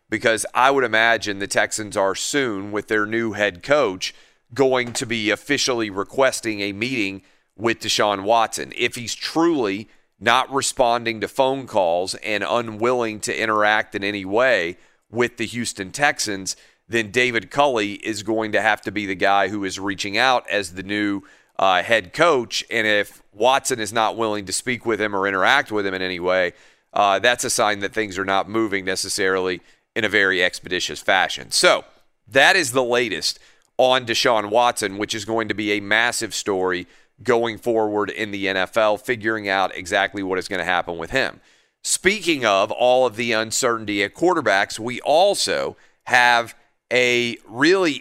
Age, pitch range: 40-59, 100-125 Hz